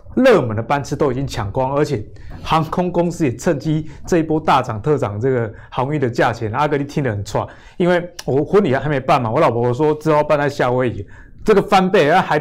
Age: 20-39